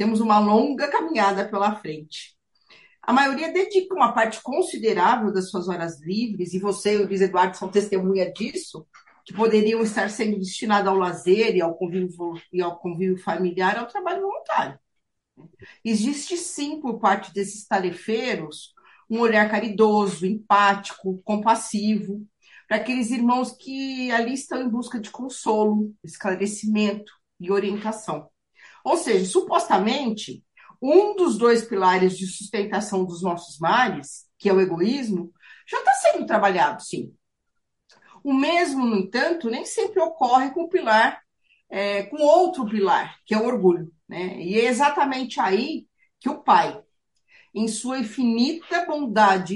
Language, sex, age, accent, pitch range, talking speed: Portuguese, female, 50-69, Brazilian, 195-260 Hz, 140 wpm